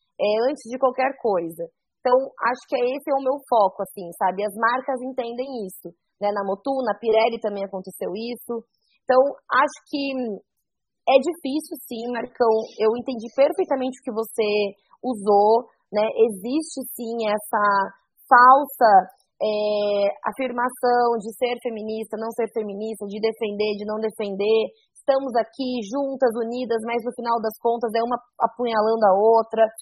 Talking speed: 145 wpm